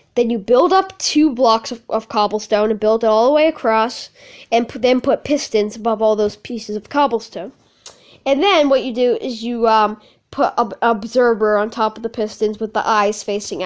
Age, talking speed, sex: 10-29, 210 wpm, female